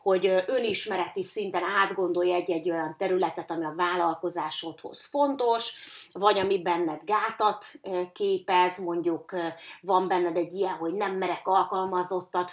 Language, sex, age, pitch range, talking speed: Hungarian, female, 30-49, 175-215 Hz, 120 wpm